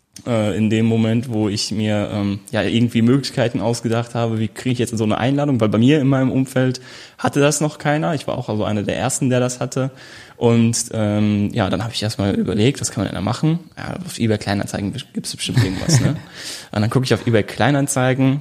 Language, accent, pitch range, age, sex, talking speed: German, German, 105-125 Hz, 10-29, male, 225 wpm